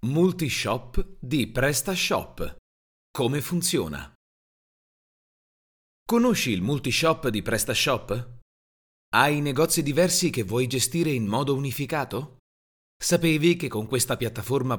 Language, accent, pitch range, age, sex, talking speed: Italian, native, 95-145 Hz, 30-49, male, 95 wpm